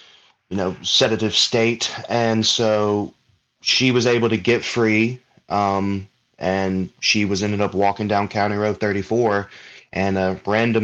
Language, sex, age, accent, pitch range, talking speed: English, male, 20-39, American, 95-110 Hz, 145 wpm